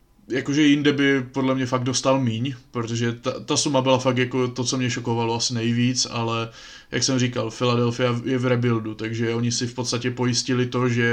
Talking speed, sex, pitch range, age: 200 wpm, male, 120-140 Hz, 20-39